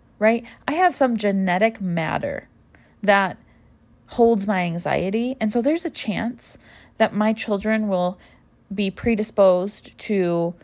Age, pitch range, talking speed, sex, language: 30-49, 170-215 Hz, 125 wpm, female, English